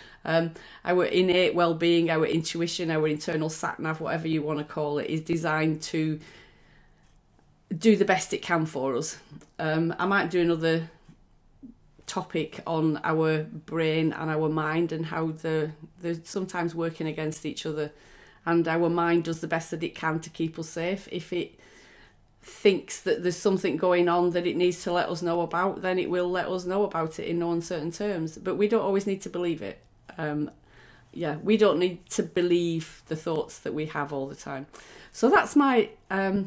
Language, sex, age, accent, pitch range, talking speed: English, female, 30-49, British, 155-180 Hz, 190 wpm